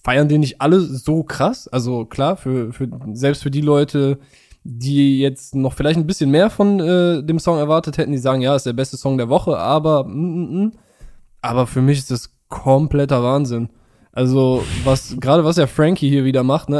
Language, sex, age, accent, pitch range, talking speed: German, male, 10-29, German, 130-160 Hz, 195 wpm